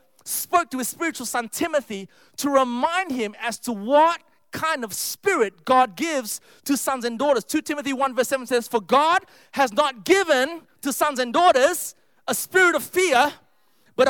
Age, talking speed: 30-49, 175 wpm